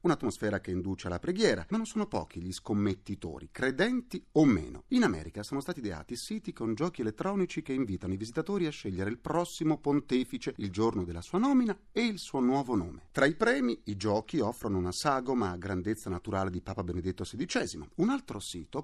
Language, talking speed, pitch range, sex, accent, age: Italian, 190 wpm, 100-170 Hz, male, native, 40-59